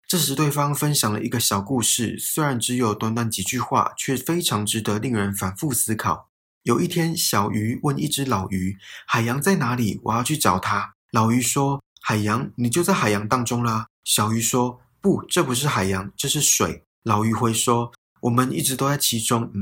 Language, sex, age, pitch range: Chinese, male, 20-39, 105-140 Hz